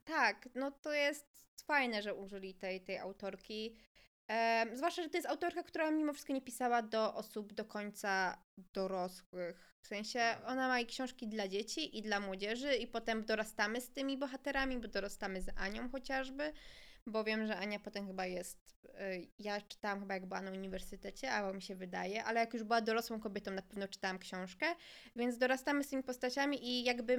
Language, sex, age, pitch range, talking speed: Polish, female, 20-39, 210-265 Hz, 185 wpm